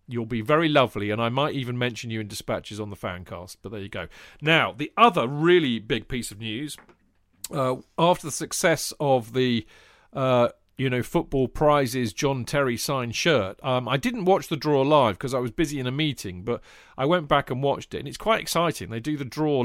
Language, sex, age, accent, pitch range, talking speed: English, male, 40-59, British, 115-150 Hz, 215 wpm